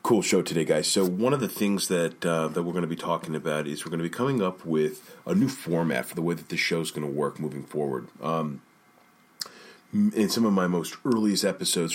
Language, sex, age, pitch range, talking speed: English, male, 30-49, 80-105 Hz, 245 wpm